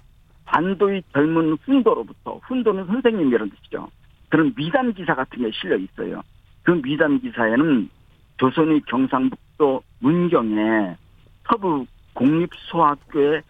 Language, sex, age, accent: Korean, male, 50-69, native